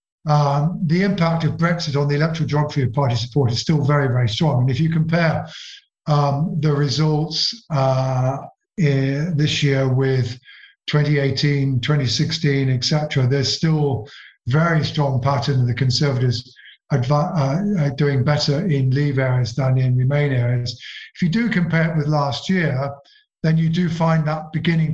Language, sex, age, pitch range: English, male, 50-69, 130-155 Hz